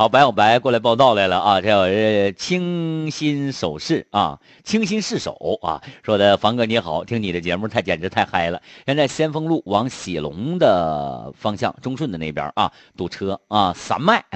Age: 50-69